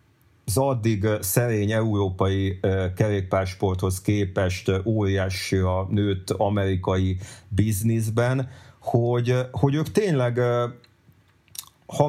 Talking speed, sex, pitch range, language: 95 wpm, male, 105-130 Hz, Hungarian